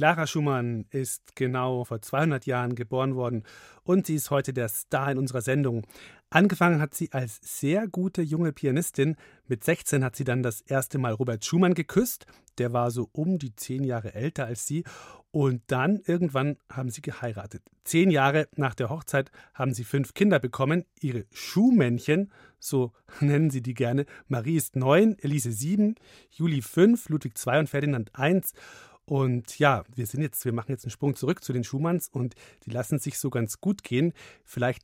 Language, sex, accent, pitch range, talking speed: German, male, German, 125-155 Hz, 180 wpm